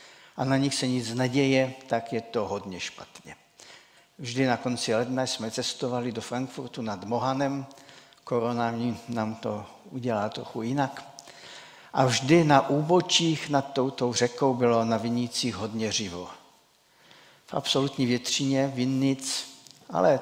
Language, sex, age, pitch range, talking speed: Czech, male, 60-79, 115-140 Hz, 130 wpm